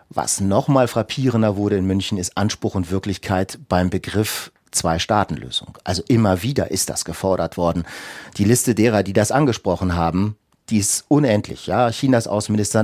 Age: 40-59